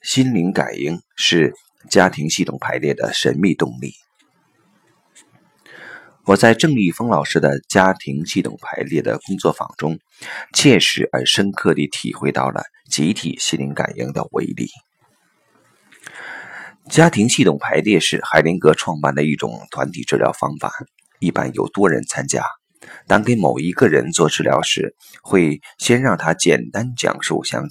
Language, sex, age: Chinese, male, 30-49